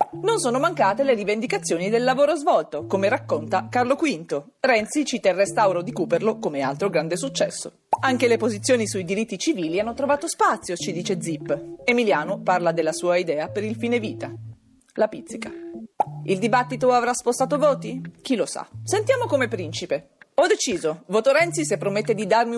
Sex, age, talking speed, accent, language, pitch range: female, 40-59, 170 wpm, native, Italian, 170-260 Hz